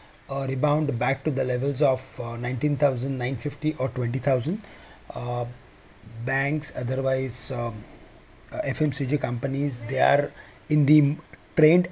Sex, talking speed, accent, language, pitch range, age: male, 110 wpm, Indian, English, 125-150 Hz, 30-49